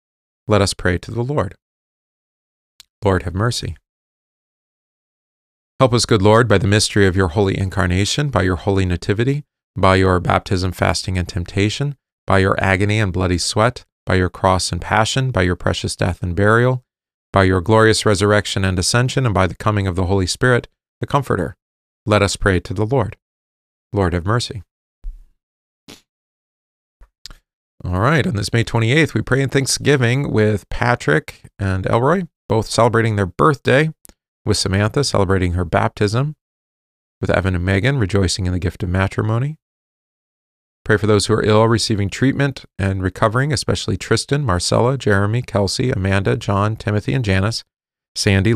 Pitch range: 95-115 Hz